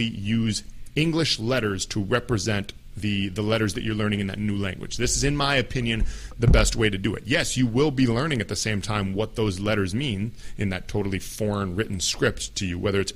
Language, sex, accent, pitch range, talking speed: English, male, American, 100-125 Hz, 225 wpm